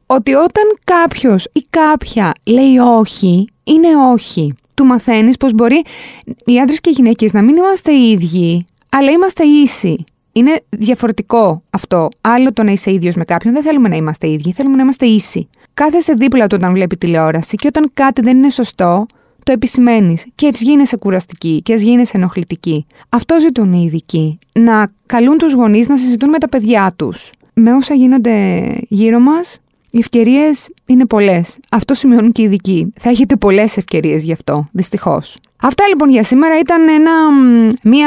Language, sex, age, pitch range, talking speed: Greek, female, 20-39, 195-270 Hz, 170 wpm